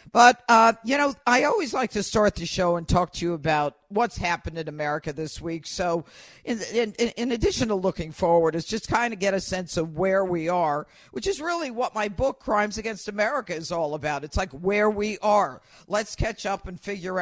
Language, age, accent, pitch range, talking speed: English, 50-69, American, 170-210 Hz, 220 wpm